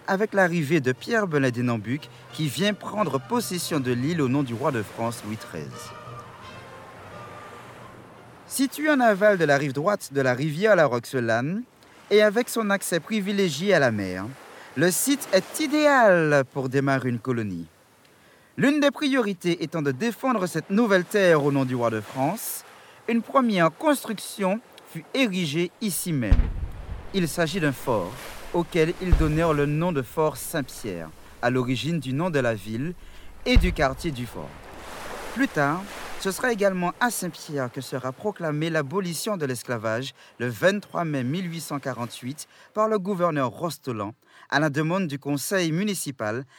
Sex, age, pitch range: male, 50-69, 125-190 Hz